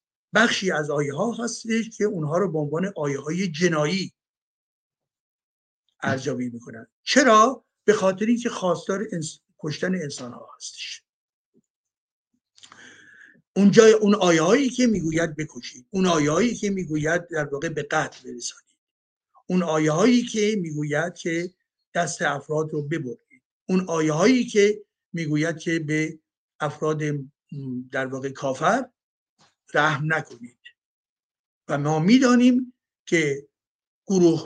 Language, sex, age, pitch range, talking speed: Persian, male, 50-69, 150-220 Hz, 120 wpm